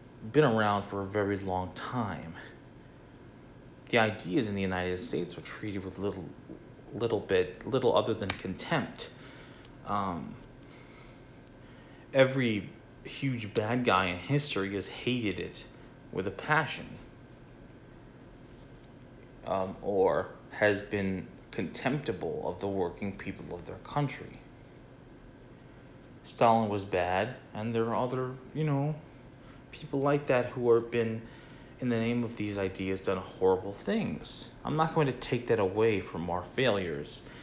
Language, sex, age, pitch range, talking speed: English, male, 30-49, 100-130 Hz, 130 wpm